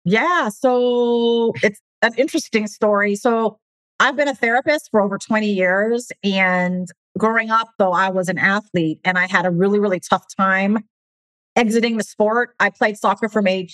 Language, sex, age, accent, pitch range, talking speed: English, female, 40-59, American, 180-215 Hz, 170 wpm